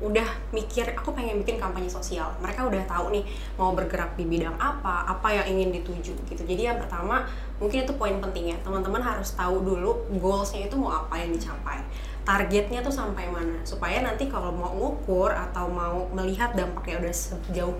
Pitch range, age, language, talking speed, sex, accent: 180-225 Hz, 20-39, Indonesian, 180 wpm, female, native